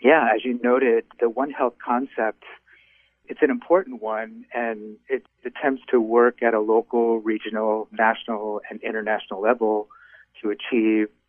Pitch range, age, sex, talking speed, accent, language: 105-125 Hz, 50-69, male, 145 wpm, American, English